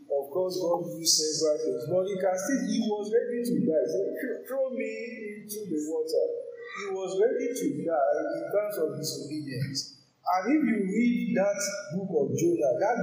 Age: 50-69